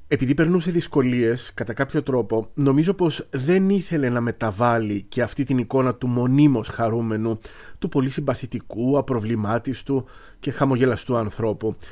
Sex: male